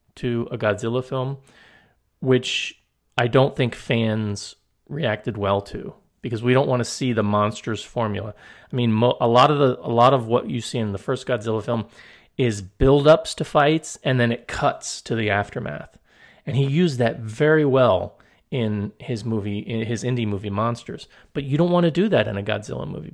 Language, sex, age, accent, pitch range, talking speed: English, male, 30-49, American, 110-140 Hz, 185 wpm